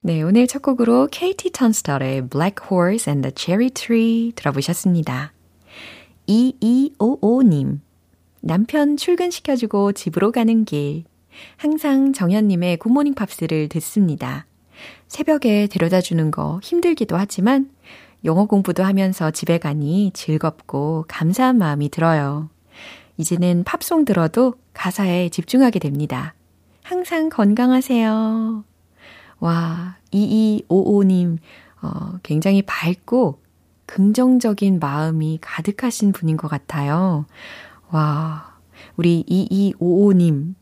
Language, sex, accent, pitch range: Korean, female, native, 155-220 Hz